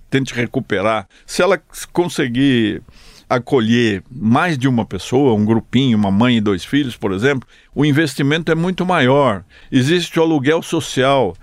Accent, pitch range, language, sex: Brazilian, 110-145 Hz, Portuguese, male